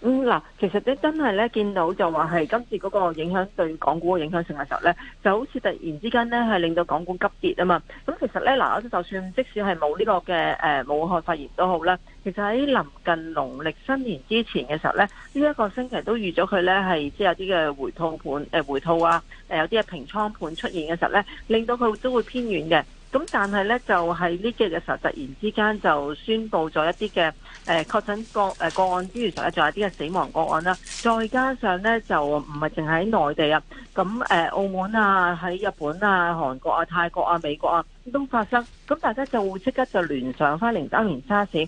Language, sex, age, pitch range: Chinese, female, 40-59, 165-225 Hz